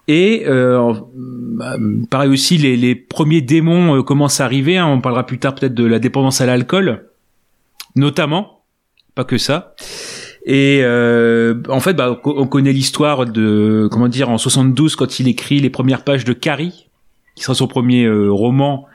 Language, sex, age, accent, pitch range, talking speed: French, male, 30-49, French, 120-145 Hz, 170 wpm